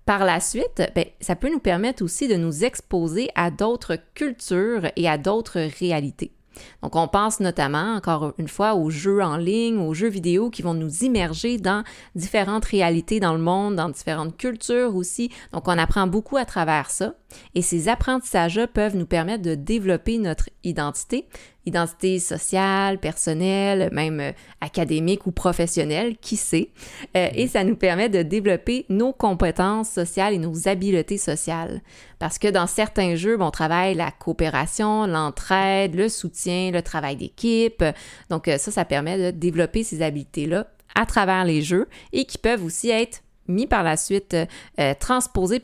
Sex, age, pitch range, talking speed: female, 20-39, 165-215 Hz, 160 wpm